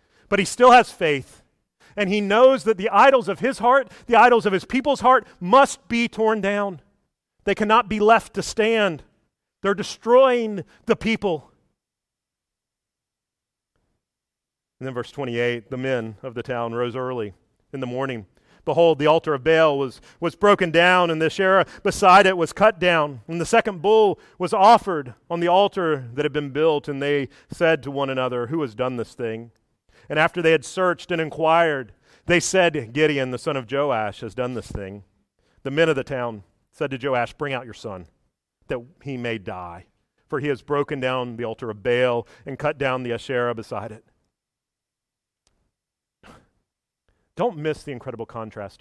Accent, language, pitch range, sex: American, English, 125-205 Hz, male